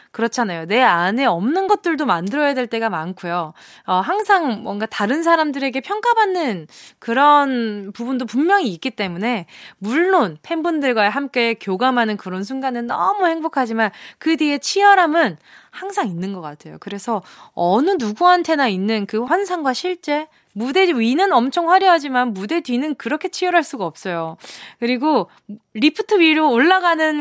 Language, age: Korean, 20-39